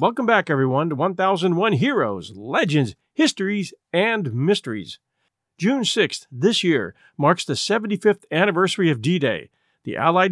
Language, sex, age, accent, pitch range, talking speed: English, male, 50-69, American, 145-200 Hz, 130 wpm